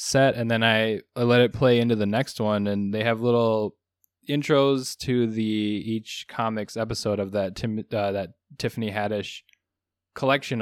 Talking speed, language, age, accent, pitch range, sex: 170 wpm, English, 10-29, American, 105-120 Hz, male